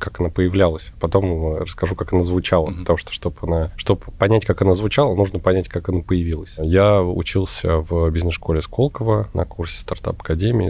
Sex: male